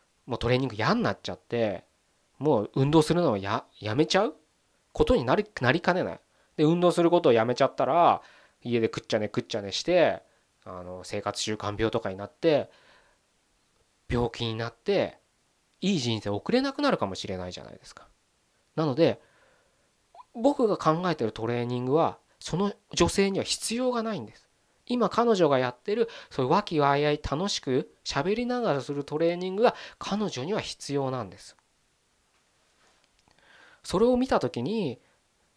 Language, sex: Japanese, male